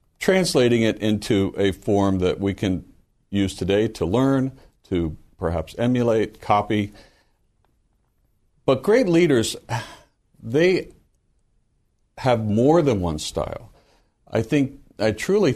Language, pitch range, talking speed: English, 95-125 Hz, 110 wpm